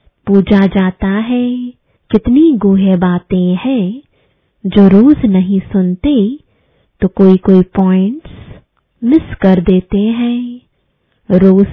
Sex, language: female, English